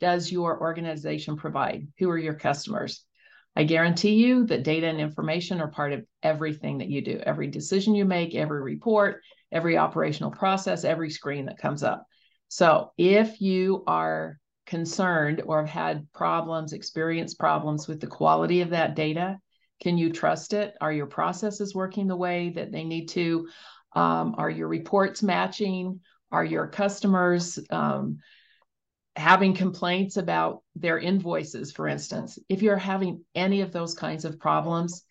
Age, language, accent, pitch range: 50-69, English, American, 150-180 Hz